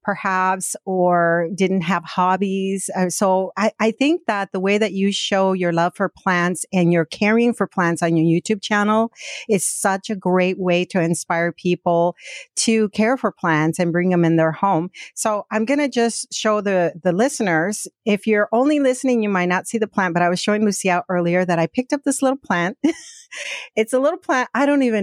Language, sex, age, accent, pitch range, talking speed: English, female, 50-69, American, 180-225 Hz, 205 wpm